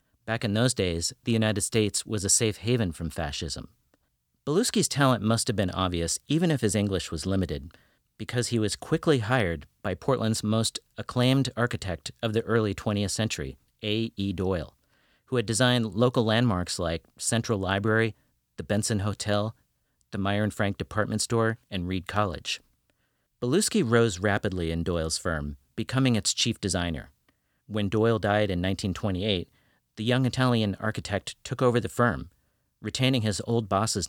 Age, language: 40-59, English